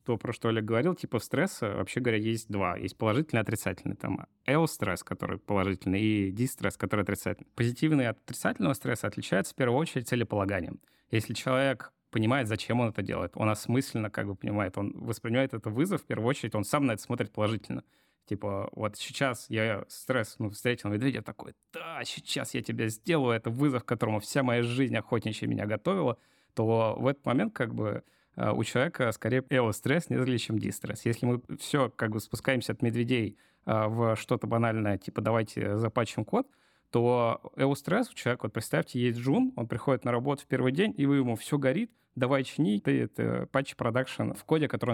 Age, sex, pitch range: 20-39, male, 110-130 Hz